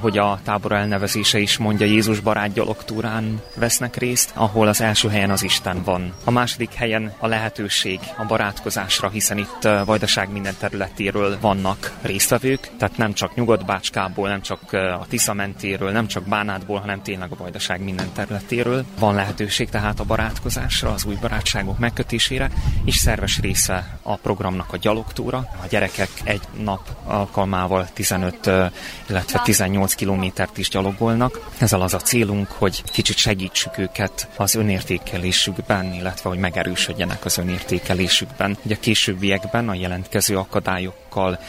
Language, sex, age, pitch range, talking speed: Hungarian, male, 30-49, 95-110 Hz, 145 wpm